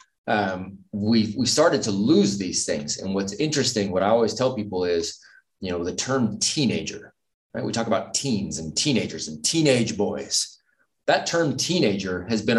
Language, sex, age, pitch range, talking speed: English, male, 20-39, 105-130 Hz, 175 wpm